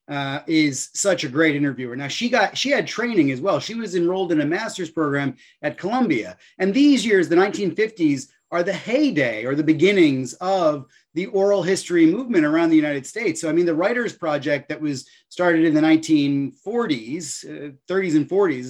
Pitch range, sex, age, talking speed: 150-200 Hz, male, 30-49, 175 wpm